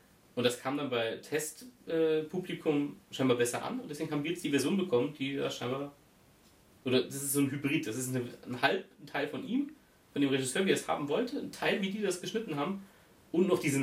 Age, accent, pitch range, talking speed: 30-49, German, 125-160 Hz, 235 wpm